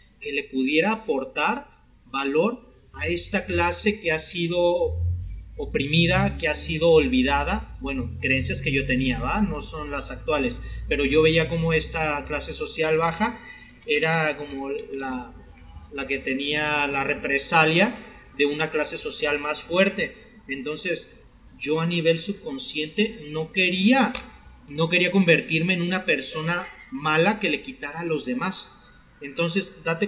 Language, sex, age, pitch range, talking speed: Spanish, male, 30-49, 135-180 Hz, 140 wpm